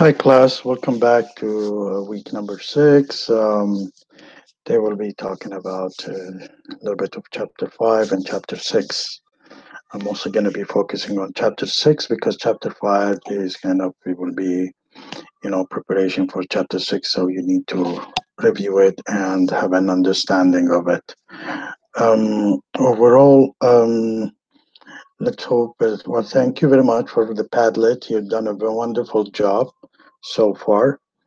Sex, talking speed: male, 150 wpm